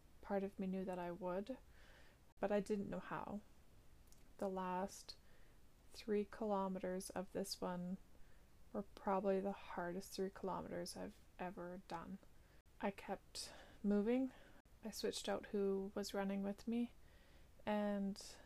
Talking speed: 130 wpm